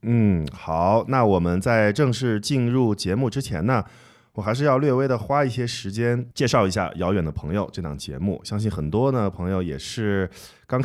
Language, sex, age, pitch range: Chinese, male, 20-39, 85-115 Hz